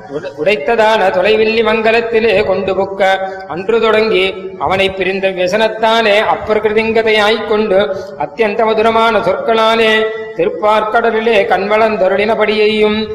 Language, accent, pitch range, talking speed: Tamil, native, 195-220 Hz, 80 wpm